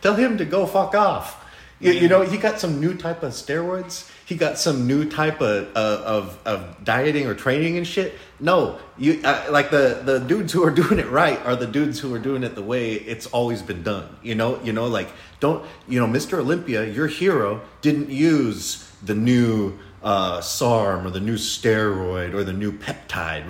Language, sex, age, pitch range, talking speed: English, male, 30-49, 105-145 Hz, 205 wpm